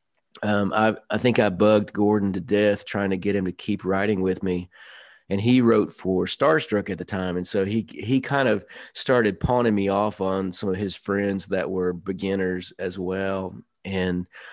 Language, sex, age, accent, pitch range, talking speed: English, male, 40-59, American, 95-105 Hz, 195 wpm